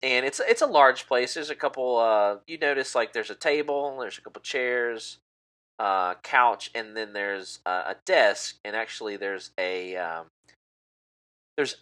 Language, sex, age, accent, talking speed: English, male, 30-49, American, 180 wpm